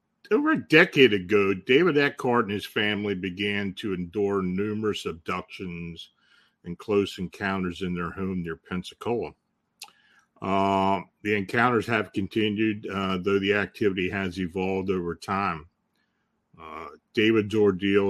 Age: 50-69